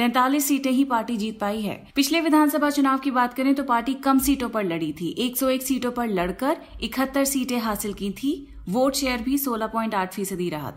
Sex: female